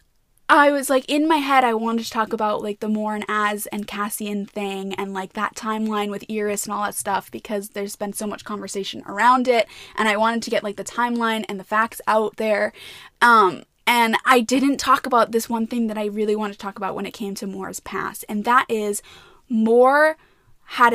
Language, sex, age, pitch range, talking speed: English, female, 10-29, 210-255 Hz, 220 wpm